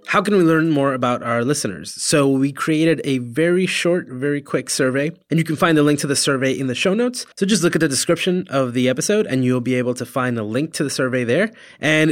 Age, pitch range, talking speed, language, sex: 20-39, 125-165 Hz, 260 wpm, English, male